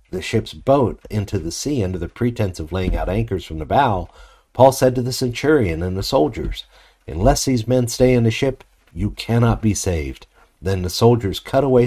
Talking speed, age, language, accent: 200 wpm, 60-79, English, American